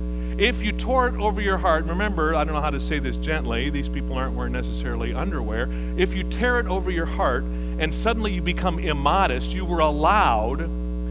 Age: 50-69